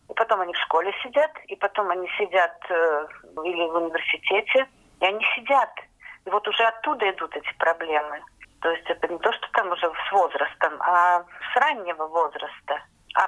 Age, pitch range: 40-59, 180-240 Hz